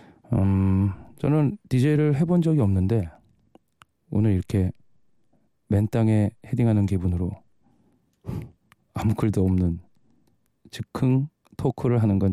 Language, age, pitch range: Korean, 40-59, 100-130 Hz